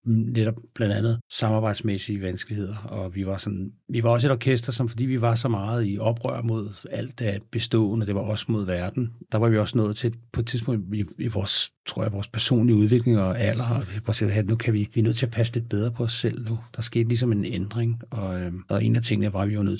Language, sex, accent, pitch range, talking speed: Danish, male, native, 100-115 Hz, 250 wpm